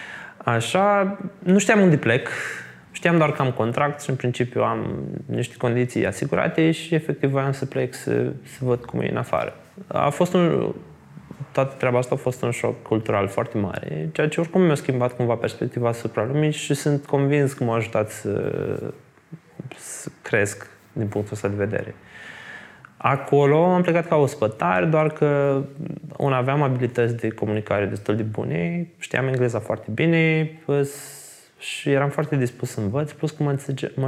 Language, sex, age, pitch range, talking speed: Romanian, male, 20-39, 115-150 Hz, 165 wpm